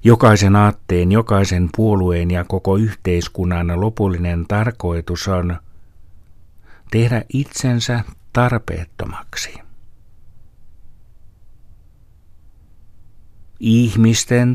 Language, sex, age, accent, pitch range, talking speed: Finnish, male, 60-79, native, 85-105 Hz, 60 wpm